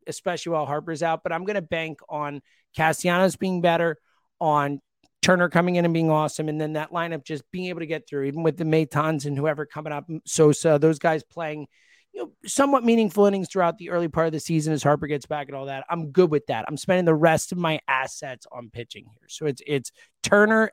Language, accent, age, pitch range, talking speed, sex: English, American, 30-49, 145-180 Hz, 225 wpm, male